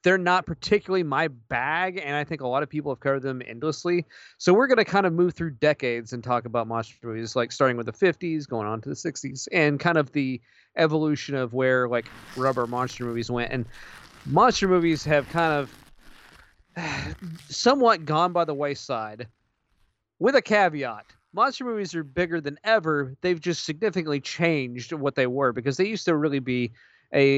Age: 30-49